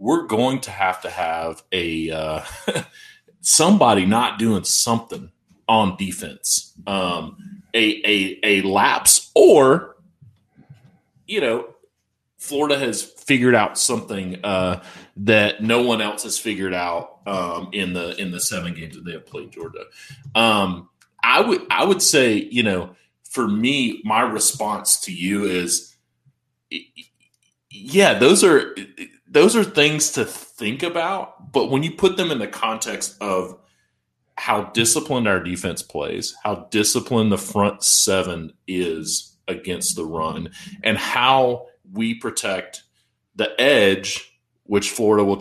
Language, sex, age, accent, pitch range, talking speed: English, male, 30-49, American, 95-140 Hz, 135 wpm